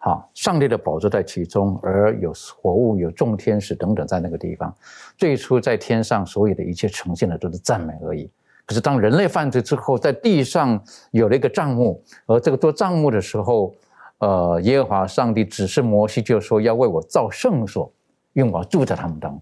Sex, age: male, 50-69